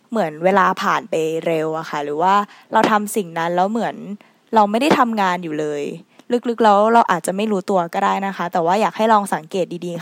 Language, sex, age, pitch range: Thai, female, 20-39, 180-225 Hz